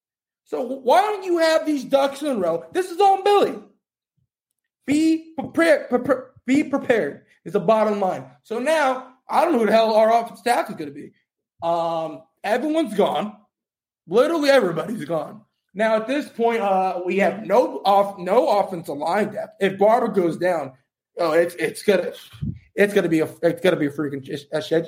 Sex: male